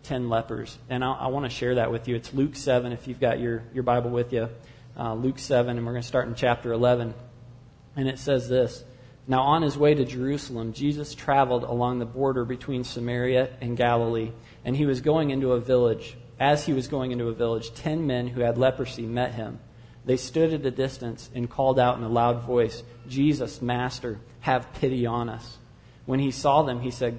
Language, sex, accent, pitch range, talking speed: English, male, American, 120-135 Hz, 215 wpm